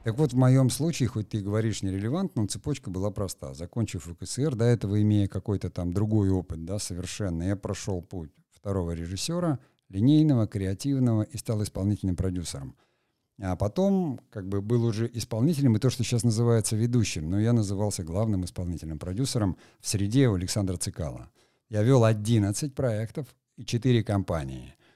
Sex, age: male, 50-69